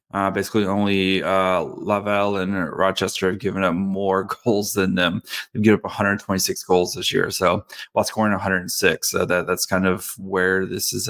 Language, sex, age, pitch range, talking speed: English, male, 20-39, 100-120 Hz, 180 wpm